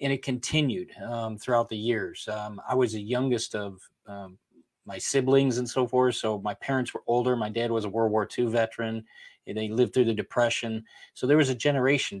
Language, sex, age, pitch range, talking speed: English, male, 40-59, 110-125 Hz, 210 wpm